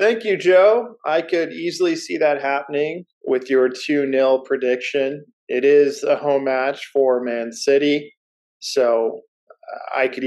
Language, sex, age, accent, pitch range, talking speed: English, male, 20-39, American, 130-185 Hz, 145 wpm